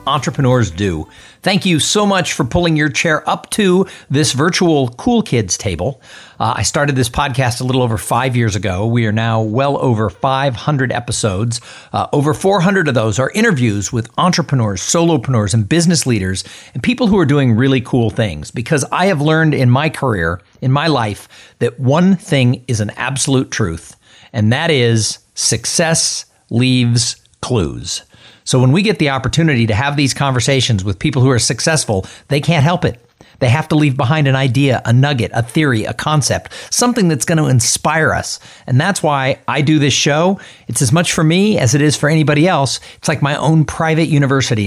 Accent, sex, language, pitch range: American, male, English, 115-155 Hz